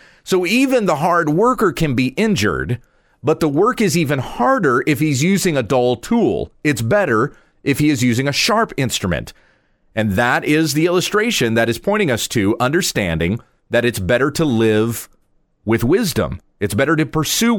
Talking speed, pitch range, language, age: 175 wpm, 115-160 Hz, English, 40-59